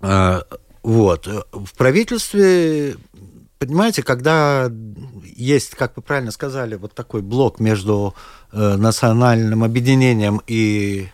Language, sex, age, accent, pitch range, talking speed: Russian, male, 50-69, native, 105-145 Hz, 85 wpm